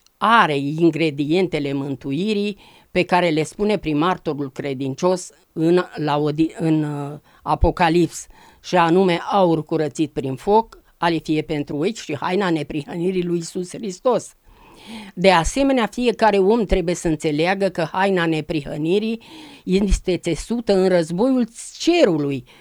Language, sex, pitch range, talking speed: Romanian, female, 165-215 Hz, 115 wpm